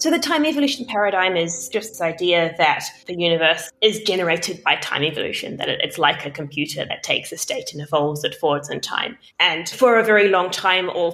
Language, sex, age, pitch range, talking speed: English, female, 20-39, 155-215 Hz, 210 wpm